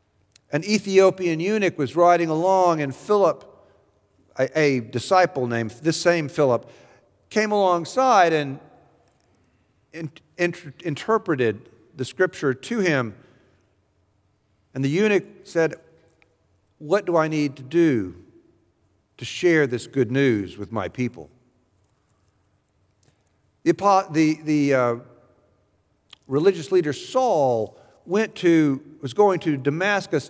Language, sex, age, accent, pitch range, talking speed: English, male, 50-69, American, 115-170 Hz, 105 wpm